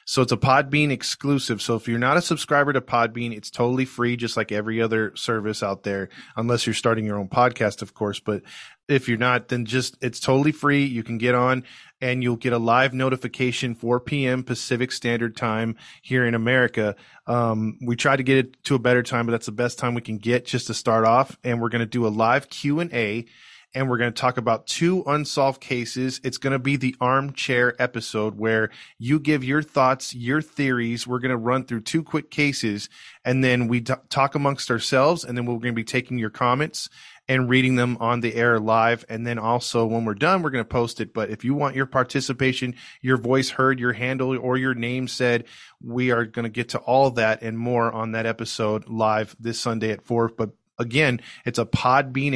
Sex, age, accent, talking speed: male, 20-39, American, 220 wpm